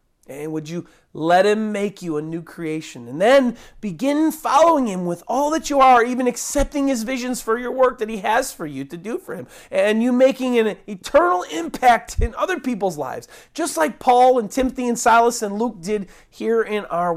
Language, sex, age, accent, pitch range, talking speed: English, male, 40-59, American, 165-250 Hz, 205 wpm